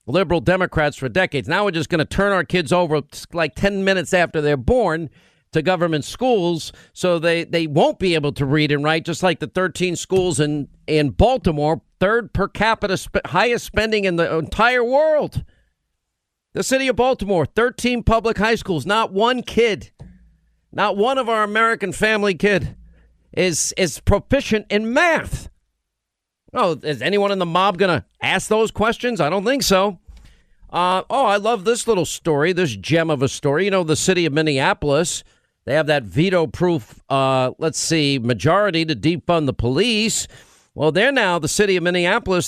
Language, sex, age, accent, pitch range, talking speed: English, male, 50-69, American, 155-210 Hz, 175 wpm